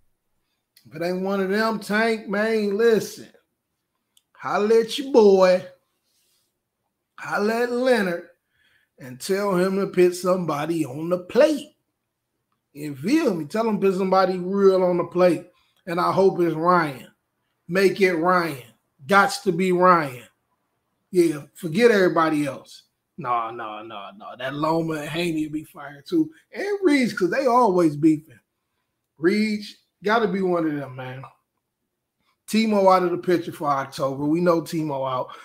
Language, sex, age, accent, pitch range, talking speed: English, male, 20-39, American, 145-195 Hz, 150 wpm